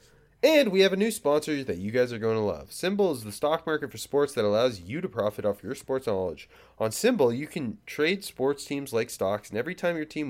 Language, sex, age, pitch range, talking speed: English, male, 30-49, 100-155 Hz, 250 wpm